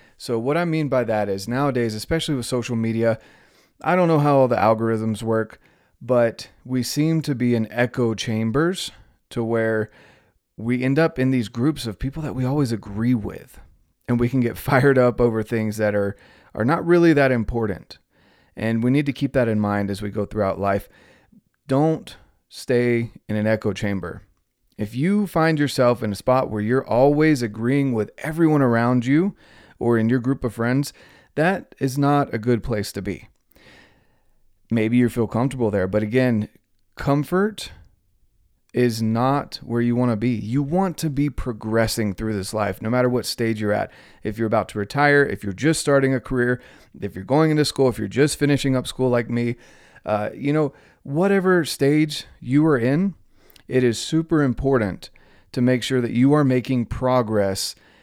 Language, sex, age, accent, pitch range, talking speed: English, male, 30-49, American, 110-140 Hz, 185 wpm